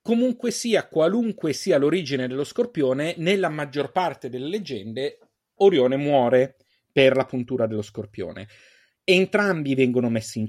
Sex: male